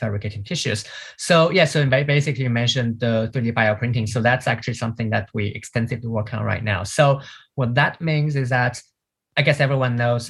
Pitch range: 115-140 Hz